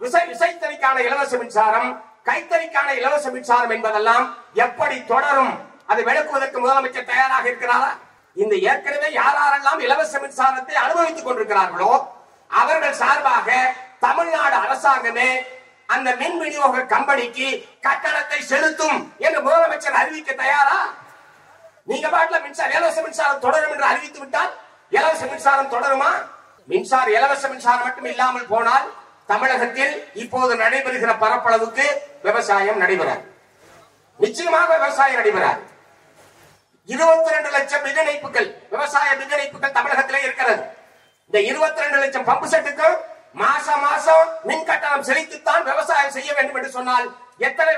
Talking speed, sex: 65 wpm, male